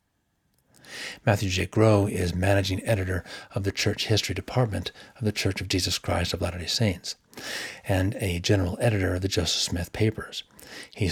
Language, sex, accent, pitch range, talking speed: English, male, American, 90-105 Hz, 160 wpm